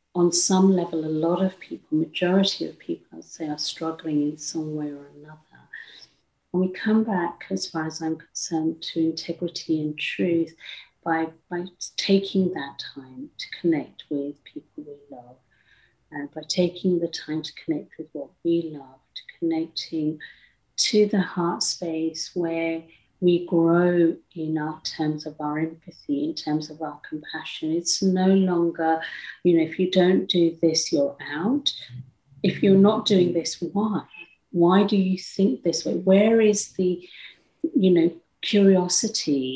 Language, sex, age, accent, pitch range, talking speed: English, female, 50-69, British, 160-190 Hz, 160 wpm